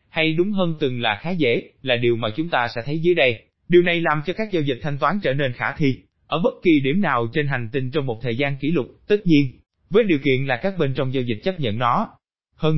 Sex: male